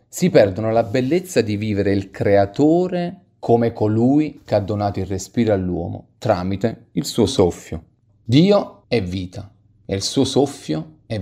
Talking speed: 150 wpm